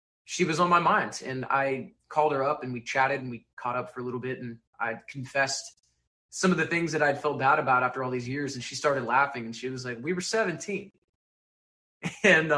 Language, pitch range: English, 125-150 Hz